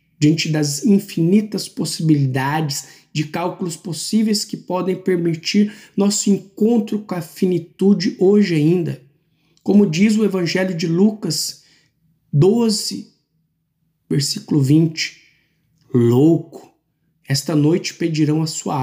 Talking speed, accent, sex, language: 100 wpm, Brazilian, male, Portuguese